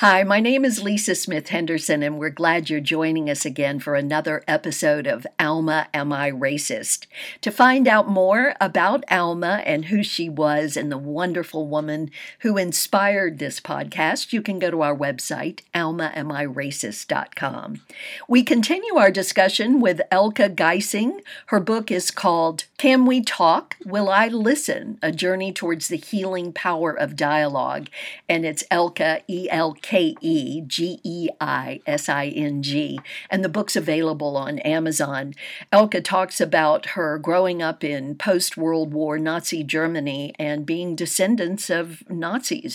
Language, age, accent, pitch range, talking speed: English, 50-69, American, 155-200 Hz, 140 wpm